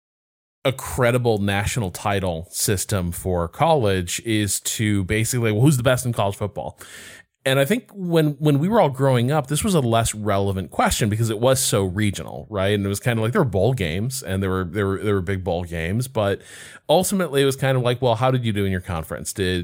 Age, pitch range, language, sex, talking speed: 20-39, 100-130 Hz, English, male, 230 wpm